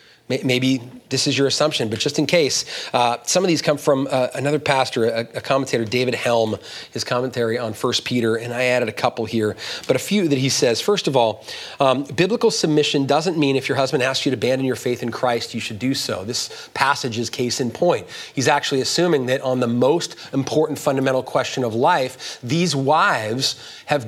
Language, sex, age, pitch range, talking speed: English, male, 30-49, 125-155 Hz, 210 wpm